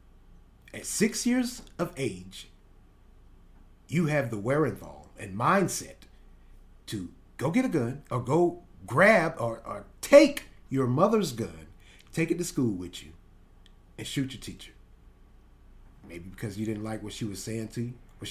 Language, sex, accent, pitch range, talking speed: English, male, American, 95-130 Hz, 155 wpm